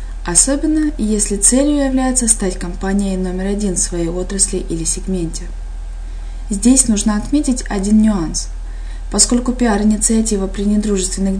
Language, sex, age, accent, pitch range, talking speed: Russian, female, 20-39, native, 185-235 Hz, 115 wpm